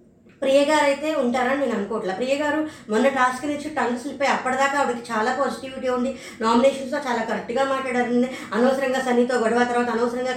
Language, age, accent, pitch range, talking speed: Telugu, 20-39, native, 240-300 Hz, 150 wpm